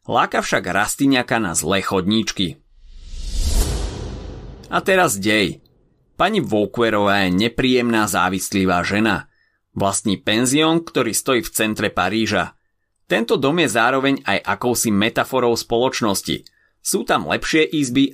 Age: 30-49